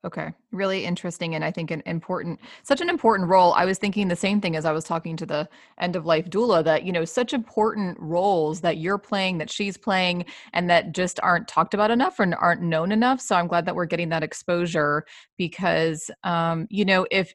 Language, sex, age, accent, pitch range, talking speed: English, female, 30-49, American, 165-205 Hz, 220 wpm